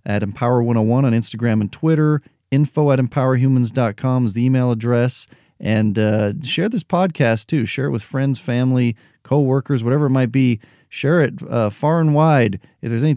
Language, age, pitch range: English, 40-59, 110-135 Hz